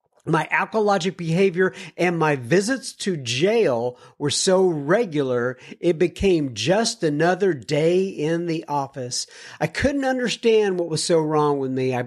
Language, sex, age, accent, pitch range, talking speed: English, male, 50-69, American, 145-205 Hz, 145 wpm